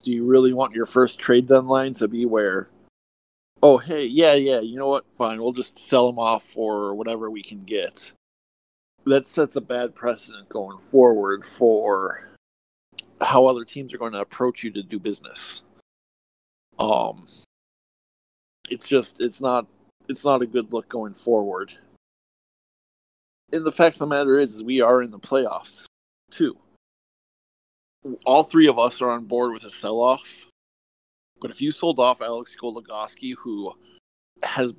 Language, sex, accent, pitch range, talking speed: English, male, American, 110-135 Hz, 160 wpm